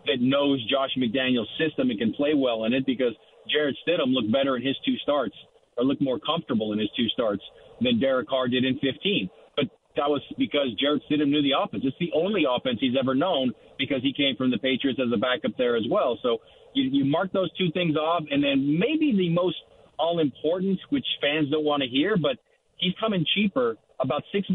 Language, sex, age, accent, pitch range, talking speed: English, male, 40-59, American, 130-190 Hz, 215 wpm